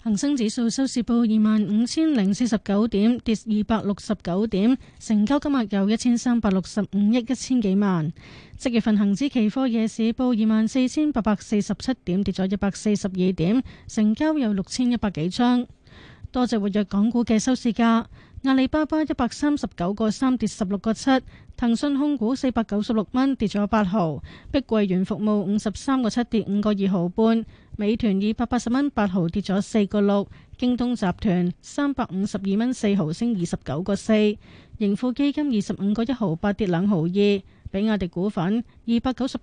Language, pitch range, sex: Chinese, 200-245 Hz, female